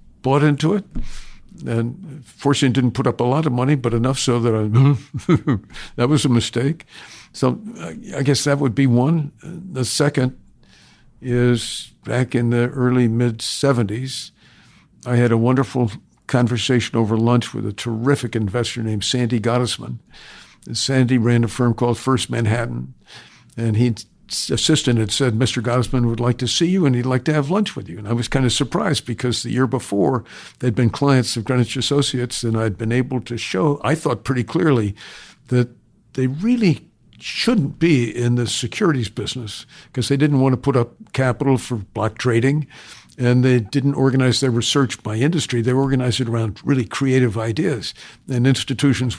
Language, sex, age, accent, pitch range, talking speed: English, male, 50-69, American, 120-140 Hz, 175 wpm